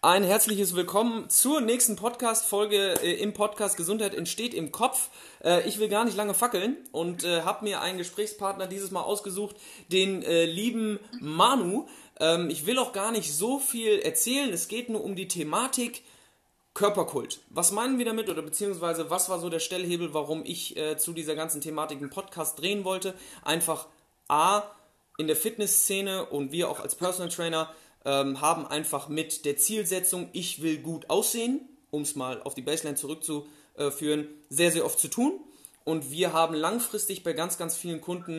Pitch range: 155-205 Hz